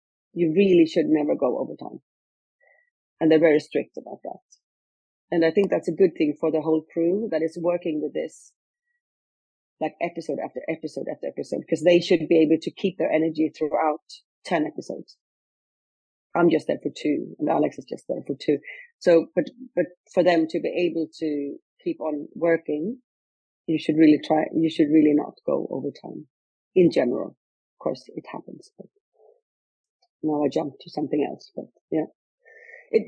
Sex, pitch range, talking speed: female, 160-200 Hz, 175 wpm